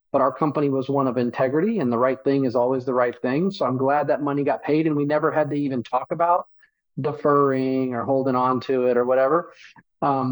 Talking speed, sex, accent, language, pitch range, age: 235 wpm, male, American, English, 125-150 Hz, 40-59